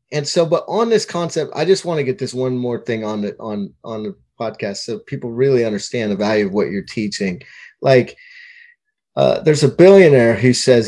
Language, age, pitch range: English, 30-49, 120-155 Hz